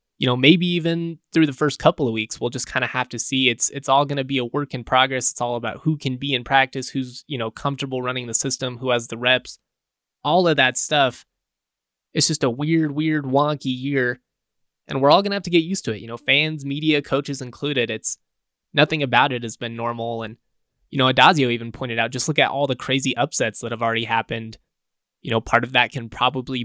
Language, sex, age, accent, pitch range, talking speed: English, male, 20-39, American, 120-145 Hz, 240 wpm